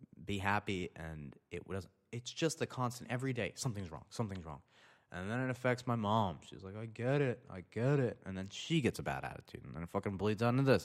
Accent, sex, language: American, male, English